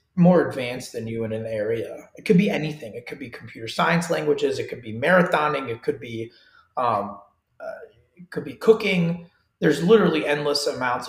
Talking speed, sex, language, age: 160 wpm, male, English, 30-49